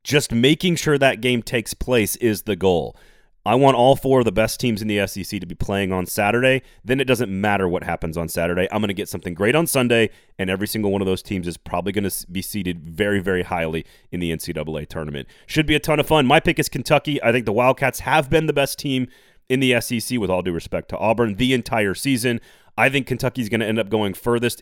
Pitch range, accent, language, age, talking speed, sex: 95-130 Hz, American, English, 30-49, 250 wpm, male